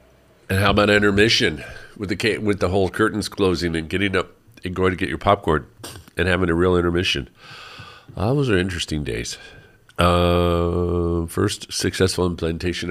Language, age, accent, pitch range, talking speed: English, 50-69, American, 75-95 Hz, 160 wpm